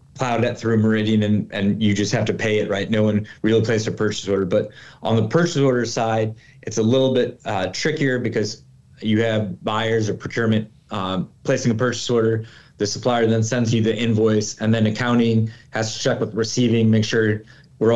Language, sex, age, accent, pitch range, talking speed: English, male, 30-49, American, 105-125 Hz, 205 wpm